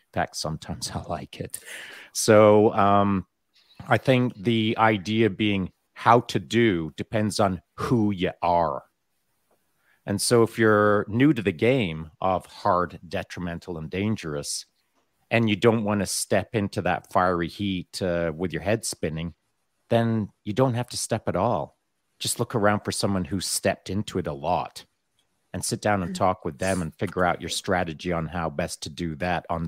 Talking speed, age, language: 175 wpm, 40-59, English